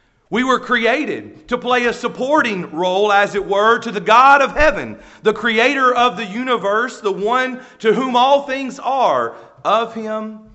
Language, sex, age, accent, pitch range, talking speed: English, male, 40-59, American, 175-230 Hz, 170 wpm